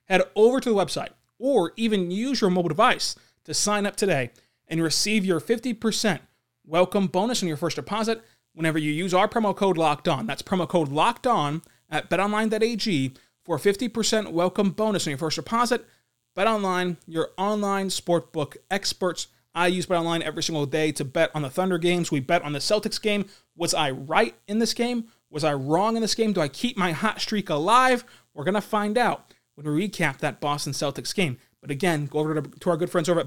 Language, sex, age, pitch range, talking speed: English, male, 30-49, 155-205 Hz, 210 wpm